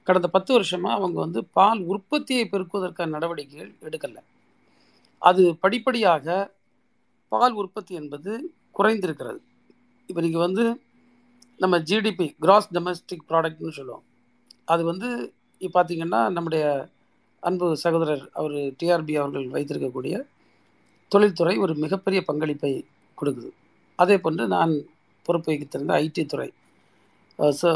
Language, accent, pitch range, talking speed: Tamil, native, 160-215 Hz, 105 wpm